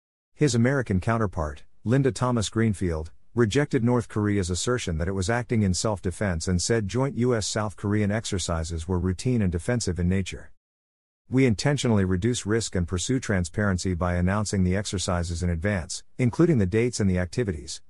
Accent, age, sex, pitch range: American, 50-69, male, 90-115 Hz